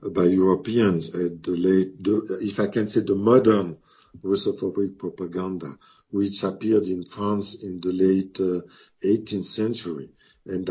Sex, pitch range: male, 95-110 Hz